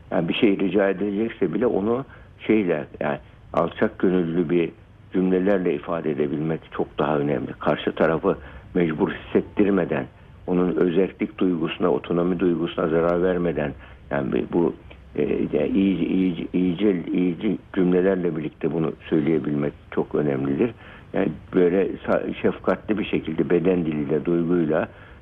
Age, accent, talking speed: 60-79, native, 120 wpm